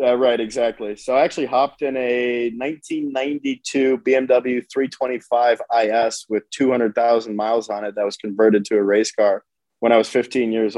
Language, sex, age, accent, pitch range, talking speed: English, male, 20-39, American, 110-125 Hz, 165 wpm